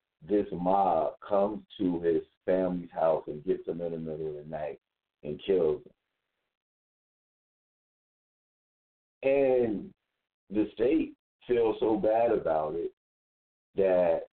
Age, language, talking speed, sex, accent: 50-69, English, 115 wpm, male, American